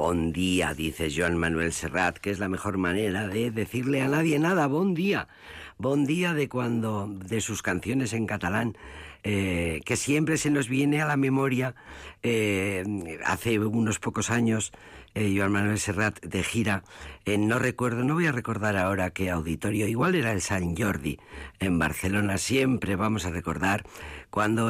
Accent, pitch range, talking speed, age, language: Spanish, 90-125 Hz, 170 wpm, 50-69, Spanish